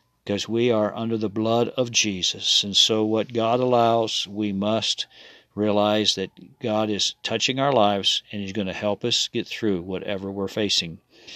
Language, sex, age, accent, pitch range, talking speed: English, male, 50-69, American, 105-120 Hz, 175 wpm